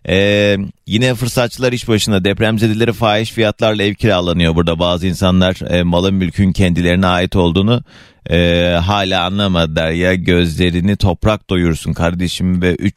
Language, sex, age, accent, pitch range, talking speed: Turkish, male, 30-49, native, 90-115 Hz, 140 wpm